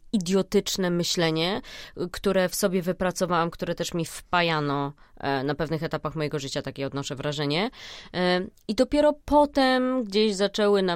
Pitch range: 150-180 Hz